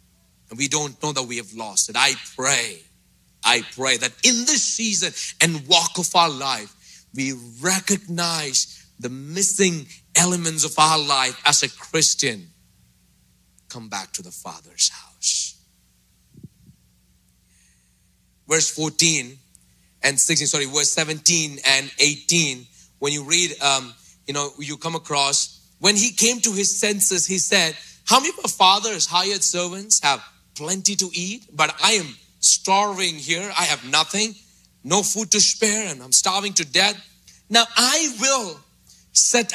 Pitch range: 140-195 Hz